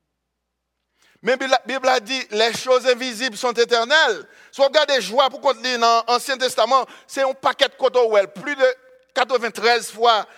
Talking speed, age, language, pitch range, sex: 185 wpm, 60-79, English, 235-280 Hz, male